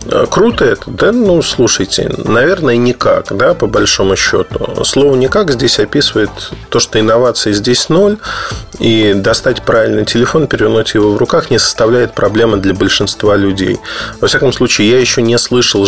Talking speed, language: 155 wpm, Russian